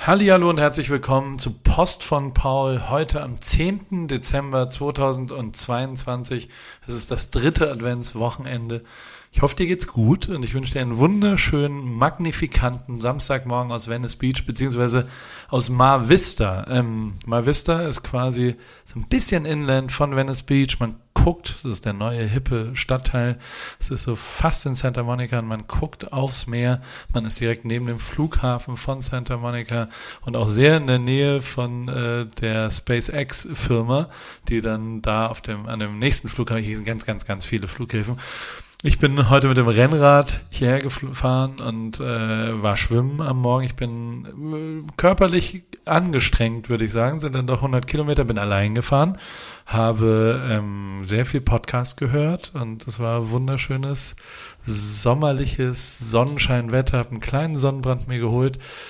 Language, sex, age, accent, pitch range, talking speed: German, male, 40-59, German, 115-140 Hz, 150 wpm